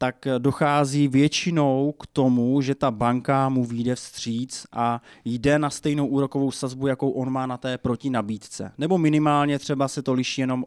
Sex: male